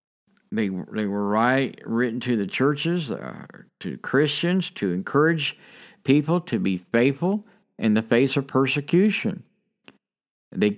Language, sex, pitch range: English, male, 110-150 Hz